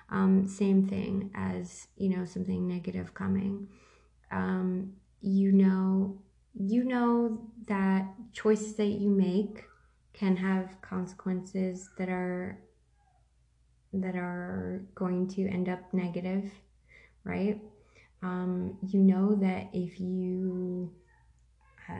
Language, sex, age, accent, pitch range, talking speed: English, female, 20-39, American, 185-205 Hz, 105 wpm